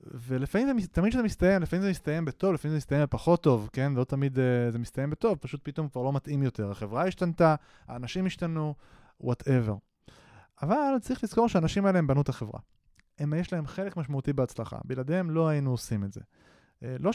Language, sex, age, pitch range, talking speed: Hebrew, male, 20-39, 125-175 Hz, 185 wpm